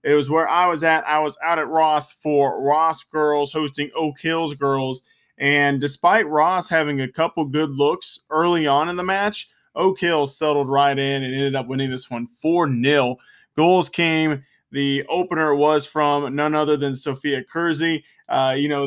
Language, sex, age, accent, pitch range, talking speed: English, male, 20-39, American, 135-160 Hz, 185 wpm